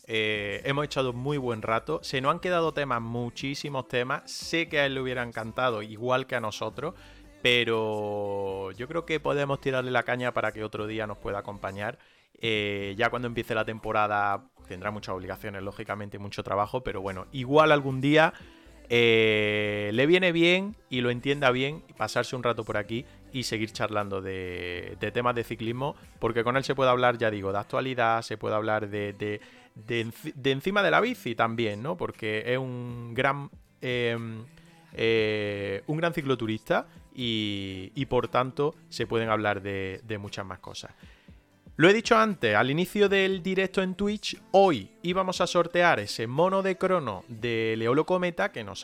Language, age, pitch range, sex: Spanish, 30-49, 110-155 Hz, male